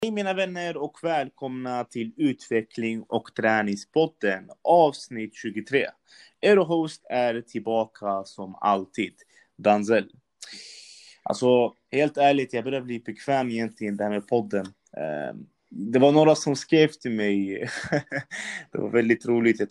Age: 20-39